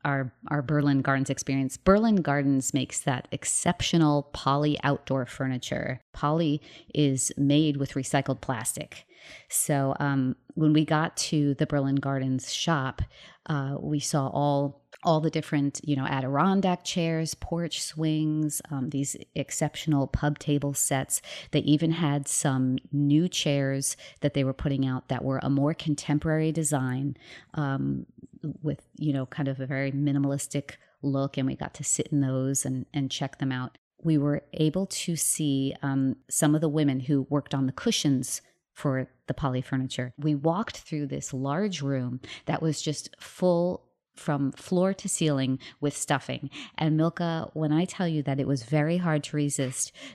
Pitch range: 135-155 Hz